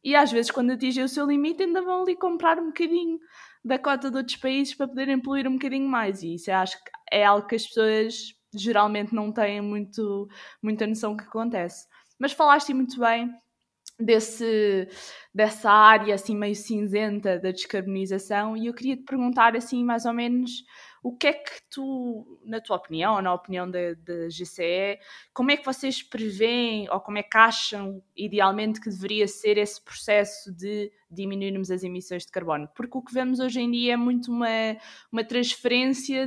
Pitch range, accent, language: 200-255 Hz, Brazilian, Portuguese